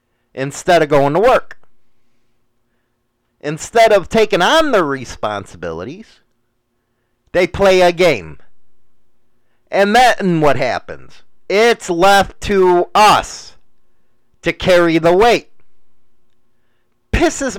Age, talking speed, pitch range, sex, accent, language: 40-59, 95 wpm, 120-180 Hz, male, American, English